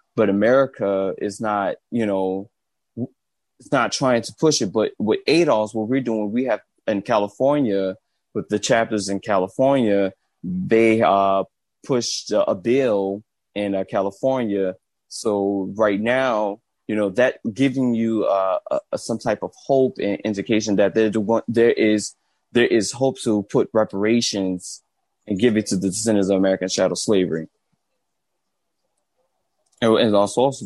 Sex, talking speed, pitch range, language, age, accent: male, 135 wpm, 95-115 Hz, English, 20-39, American